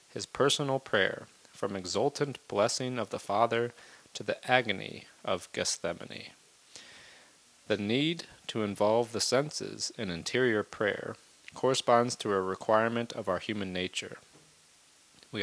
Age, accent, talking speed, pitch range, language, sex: 30-49, American, 125 wpm, 105-125 Hz, English, male